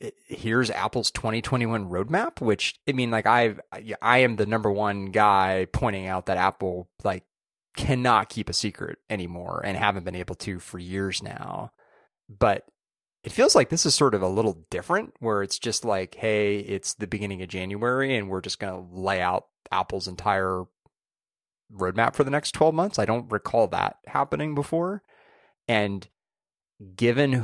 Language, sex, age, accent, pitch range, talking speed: English, male, 30-49, American, 95-125 Hz, 170 wpm